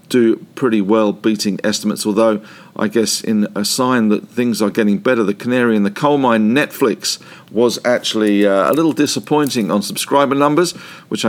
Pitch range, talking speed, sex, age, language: 105-140 Hz, 170 wpm, male, 50-69, English